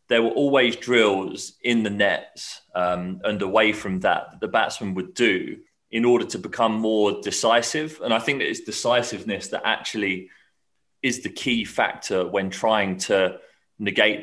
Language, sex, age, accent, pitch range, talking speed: English, male, 30-49, British, 100-120 Hz, 160 wpm